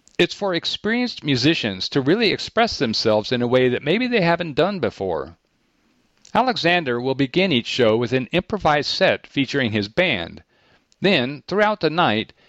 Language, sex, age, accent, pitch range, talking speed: English, male, 50-69, American, 115-160 Hz, 160 wpm